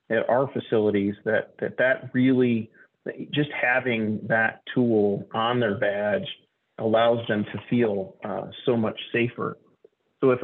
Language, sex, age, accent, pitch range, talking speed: English, male, 40-59, American, 110-125 Hz, 140 wpm